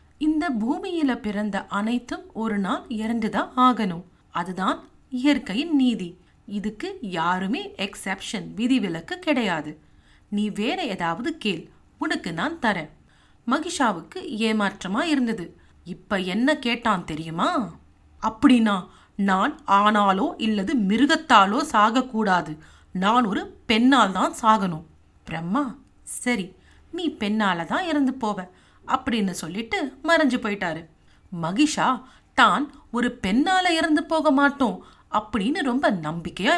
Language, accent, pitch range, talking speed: Tamil, native, 200-285 Hz, 100 wpm